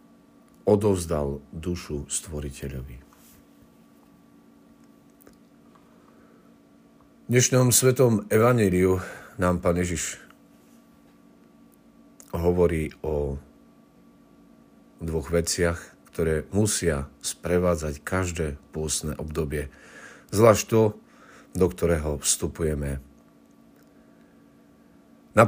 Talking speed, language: 55 wpm, Slovak